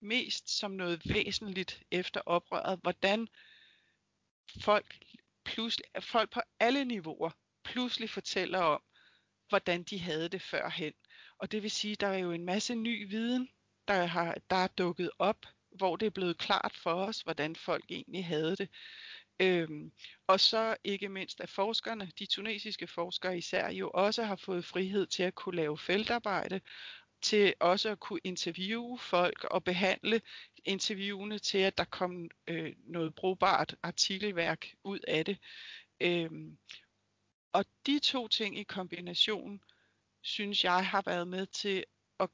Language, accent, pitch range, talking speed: Danish, native, 175-210 Hz, 145 wpm